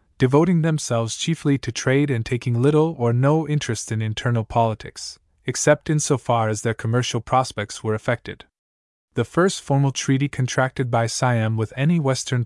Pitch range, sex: 110-135 Hz, male